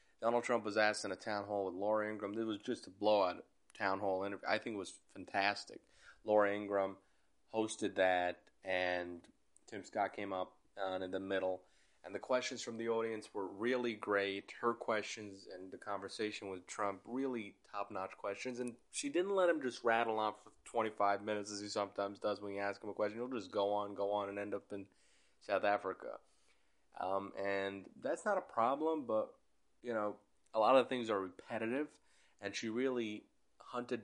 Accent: American